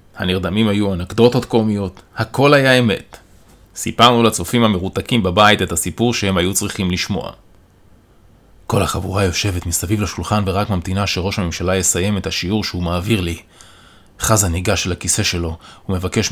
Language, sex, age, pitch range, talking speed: Hebrew, male, 30-49, 90-110 Hz, 140 wpm